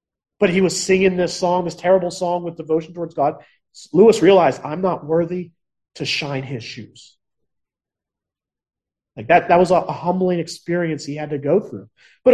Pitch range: 170-220 Hz